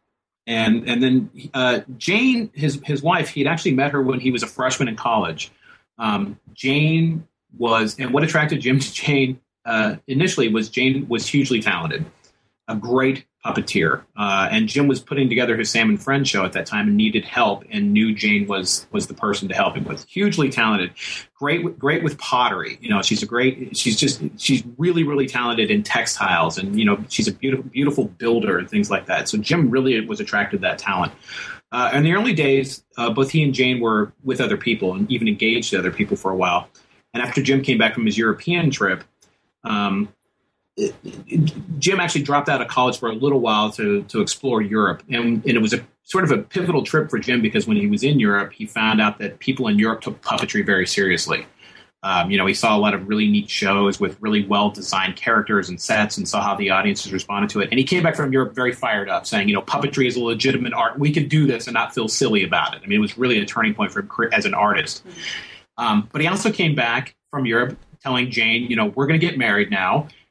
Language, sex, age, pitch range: English, male, 30-49, 115-155 Hz